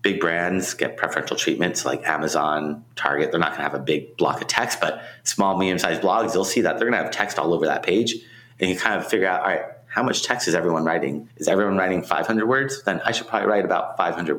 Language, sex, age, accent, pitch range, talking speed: English, male, 30-49, American, 85-110 Hz, 250 wpm